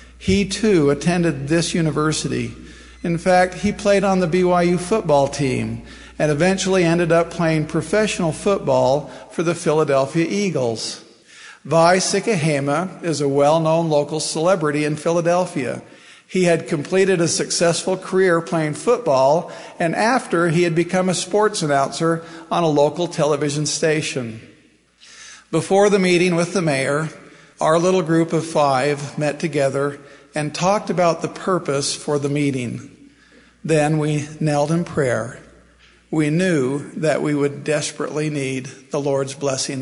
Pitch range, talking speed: 145-175 Hz, 135 wpm